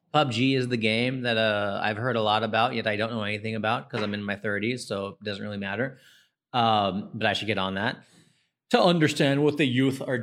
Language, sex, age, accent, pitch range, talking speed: English, male, 30-49, American, 105-125 Hz, 235 wpm